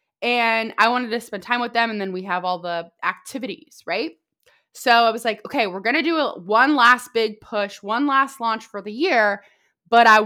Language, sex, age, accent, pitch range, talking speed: English, female, 20-39, American, 190-230 Hz, 215 wpm